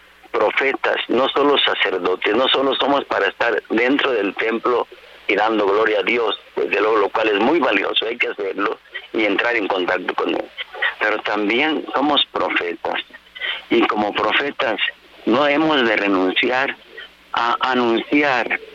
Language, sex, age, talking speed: Spanish, male, 50-69, 145 wpm